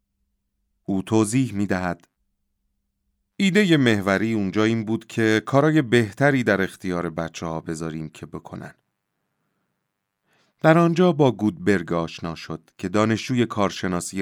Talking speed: 110 wpm